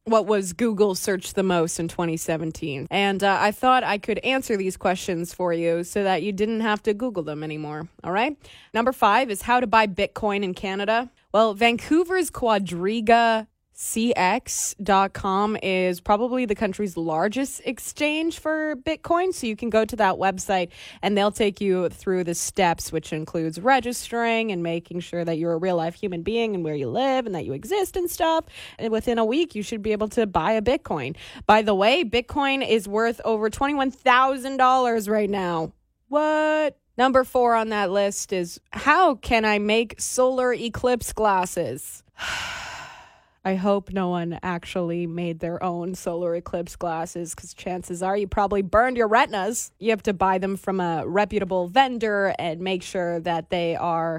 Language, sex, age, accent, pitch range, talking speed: English, female, 20-39, American, 180-240 Hz, 175 wpm